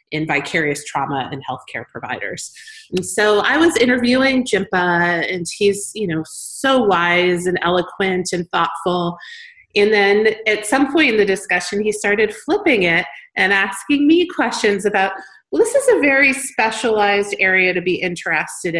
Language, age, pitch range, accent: English, 30-49, 155-205 Hz, American